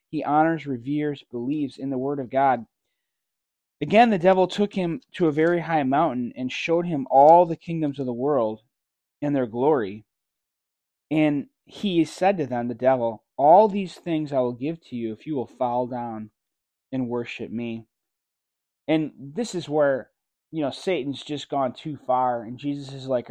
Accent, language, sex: American, English, male